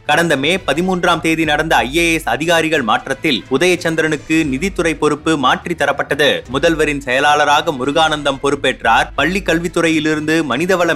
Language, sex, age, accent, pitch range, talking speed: Tamil, male, 30-49, native, 145-165 Hz, 110 wpm